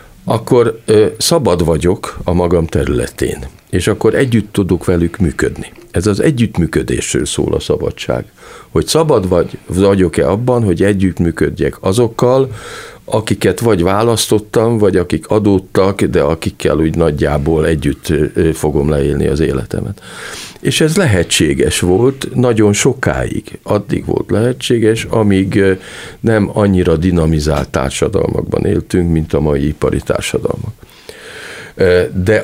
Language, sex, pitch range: Hungarian, male, 80-110 Hz